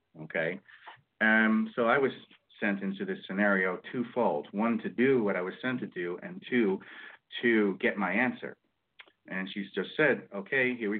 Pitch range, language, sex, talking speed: 100-110 Hz, English, male, 175 wpm